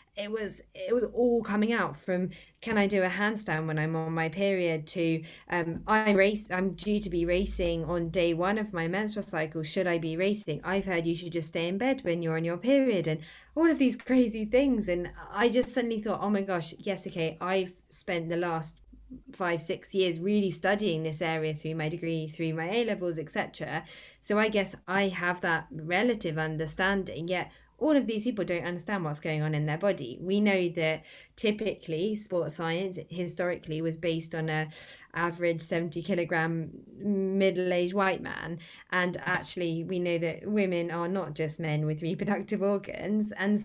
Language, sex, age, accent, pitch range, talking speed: English, female, 20-39, British, 165-200 Hz, 190 wpm